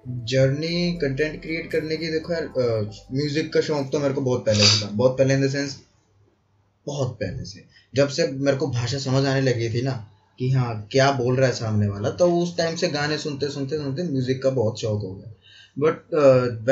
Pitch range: 115-150 Hz